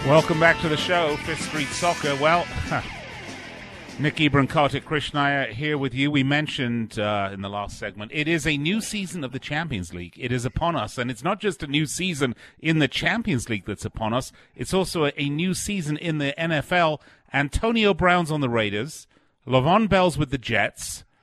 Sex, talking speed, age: male, 185 wpm, 40-59